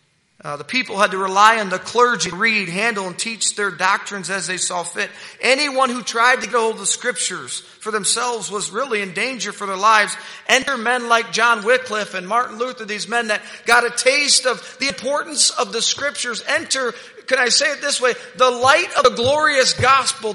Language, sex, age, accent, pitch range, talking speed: English, male, 40-59, American, 185-245 Hz, 210 wpm